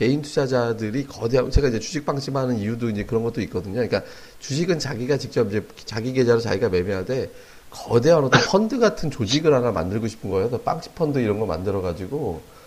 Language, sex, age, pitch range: Korean, male, 30-49, 105-135 Hz